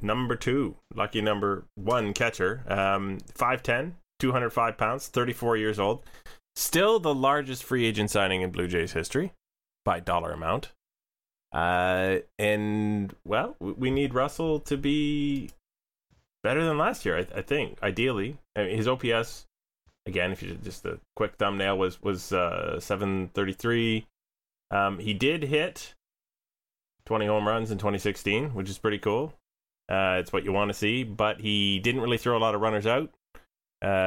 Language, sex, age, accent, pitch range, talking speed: English, male, 20-39, American, 100-120 Hz, 160 wpm